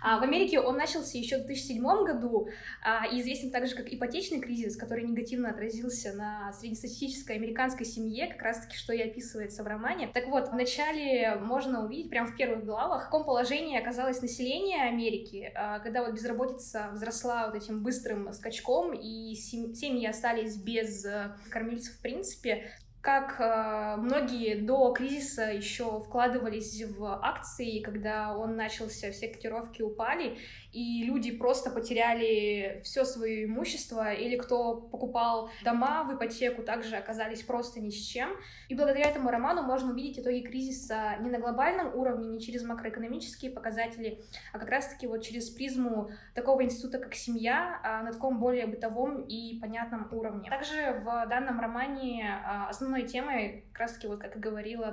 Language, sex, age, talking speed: English, female, 20-39, 145 wpm